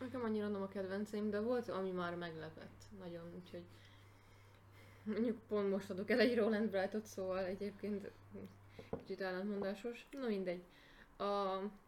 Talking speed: 135 wpm